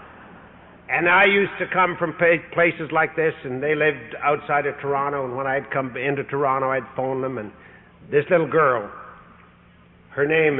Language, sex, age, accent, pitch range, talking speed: English, male, 60-79, American, 115-155 Hz, 170 wpm